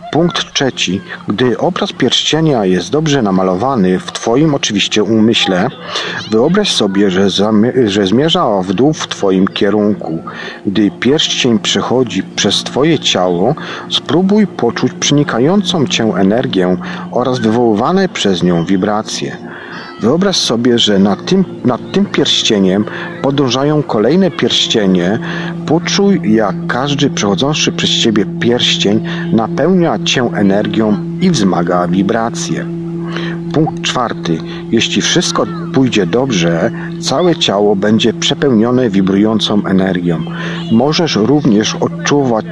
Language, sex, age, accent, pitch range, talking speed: Polish, male, 40-59, native, 105-170 Hz, 110 wpm